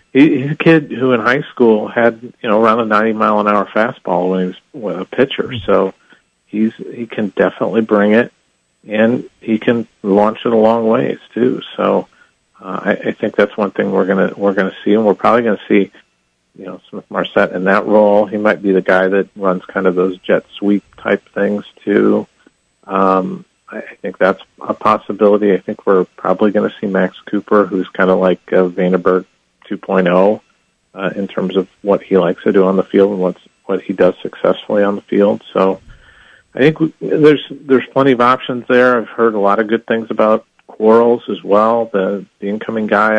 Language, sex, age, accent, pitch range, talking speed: English, male, 40-59, American, 95-110 Hz, 200 wpm